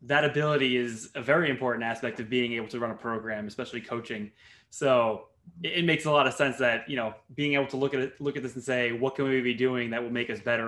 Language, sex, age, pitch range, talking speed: English, male, 20-39, 120-140 Hz, 265 wpm